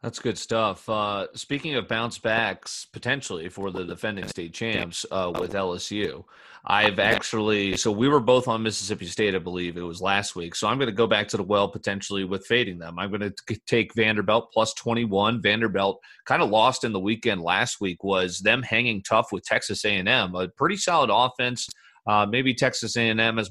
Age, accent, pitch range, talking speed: 30-49, American, 100-120 Hz, 195 wpm